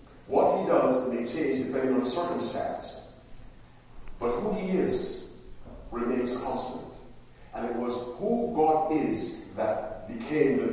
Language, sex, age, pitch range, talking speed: English, male, 50-69, 120-155 Hz, 130 wpm